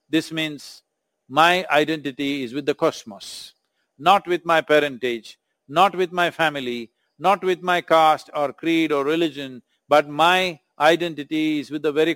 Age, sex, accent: 50-69, male, Indian